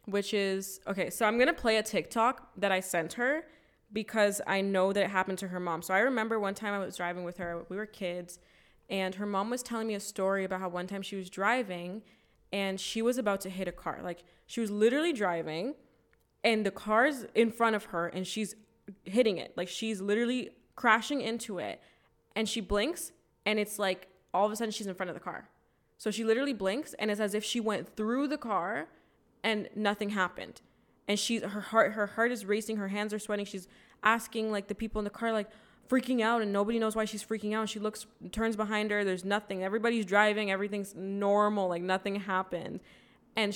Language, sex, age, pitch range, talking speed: English, female, 20-39, 190-225 Hz, 220 wpm